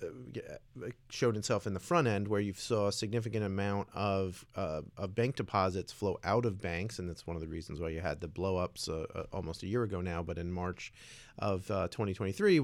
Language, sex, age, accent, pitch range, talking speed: English, male, 40-59, American, 95-115 Hz, 215 wpm